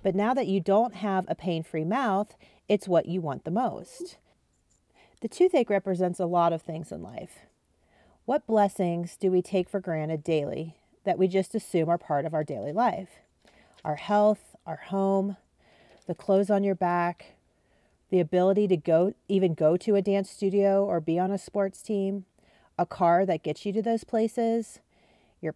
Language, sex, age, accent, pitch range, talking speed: English, female, 40-59, American, 170-210 Hz, 180 wpm